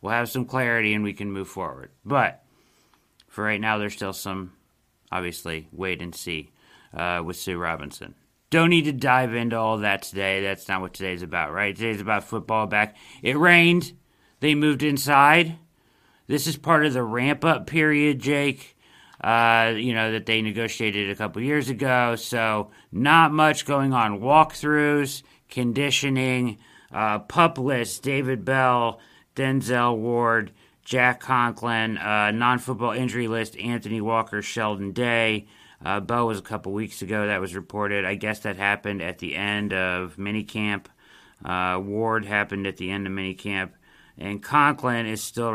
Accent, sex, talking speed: American, male, 160 wpm